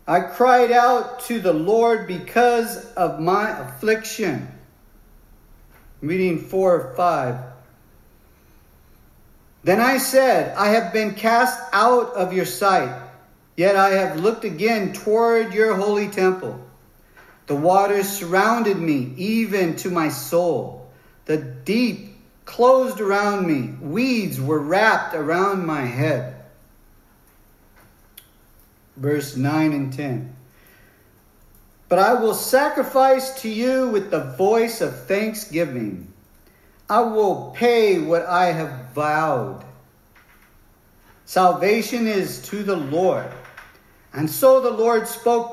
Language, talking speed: English, 110 wpm